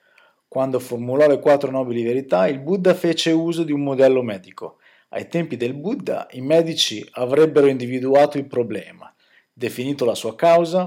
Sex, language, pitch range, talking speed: male, Italian, 130-165 Hz, 155 wpm